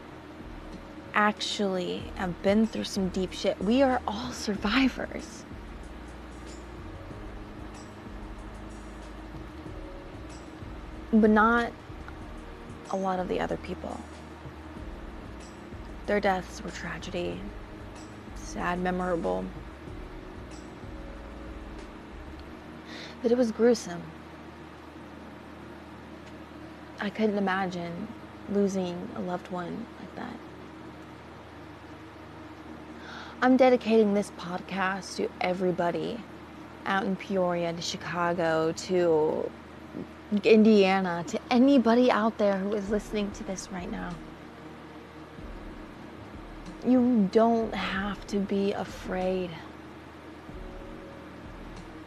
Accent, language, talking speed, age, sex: American, English, 80 wpm, 20-39, female